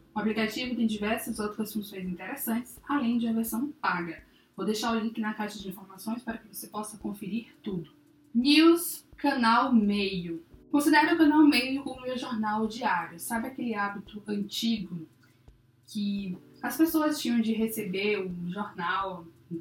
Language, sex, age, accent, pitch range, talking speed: Portuguese, female, 10-29, Brazilian, 195-245 Hz, 155 wpm